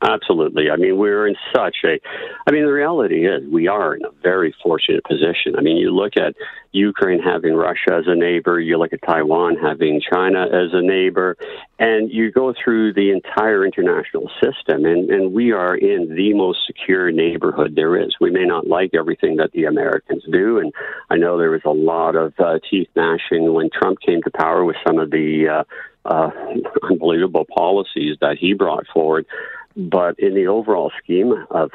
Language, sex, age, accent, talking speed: English, male, 50-69, American, 190 wpm